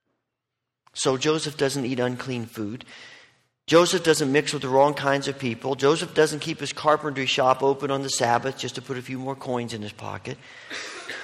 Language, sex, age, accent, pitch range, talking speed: English, male, 40-59, American, 125-170 Hz, 185 wpm